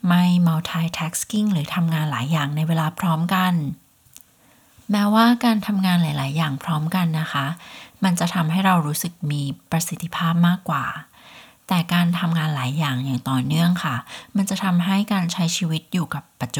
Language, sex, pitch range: Thai, female, 150-185 Hz